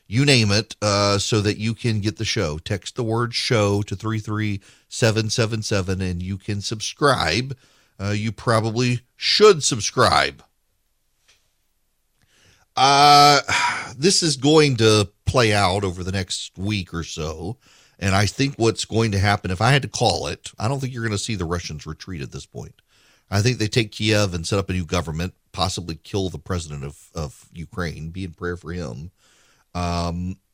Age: 40-59